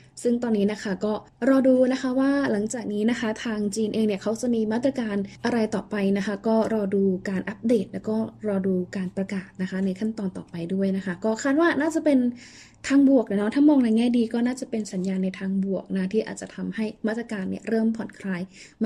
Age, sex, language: 20-39, female, Thai